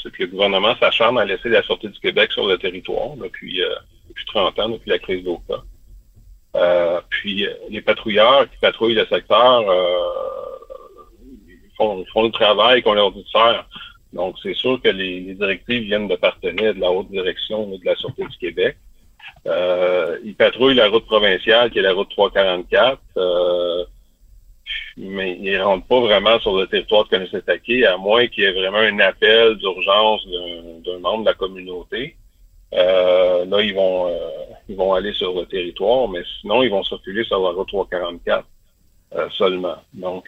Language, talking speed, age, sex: French, 180 wpm, 50-69, male